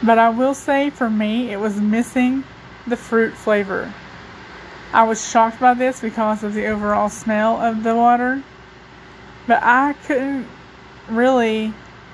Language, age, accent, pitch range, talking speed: English, 20-39, American, 220-255 Hz, 145 wpm